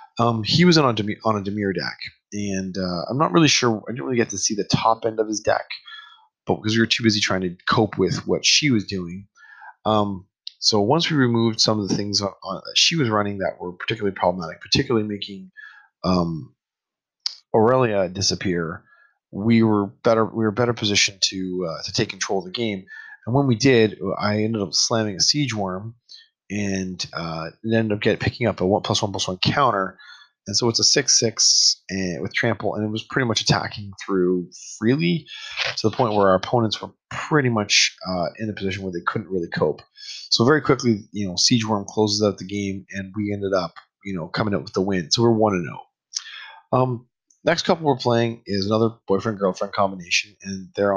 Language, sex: English, male